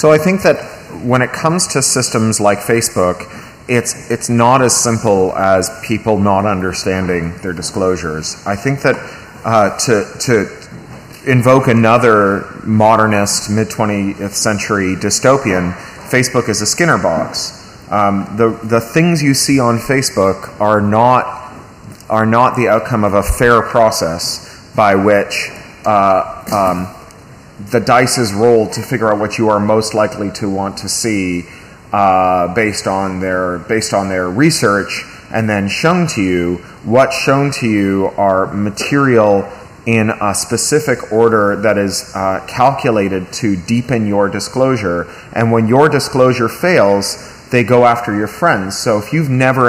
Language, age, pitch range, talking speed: Swedish, 30-49, 100-120 Hz, 145 wpm